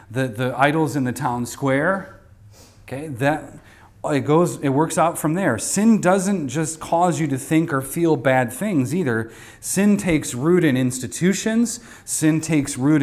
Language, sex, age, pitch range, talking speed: English, male, 40-59, 115-155 Hz, 165 wpm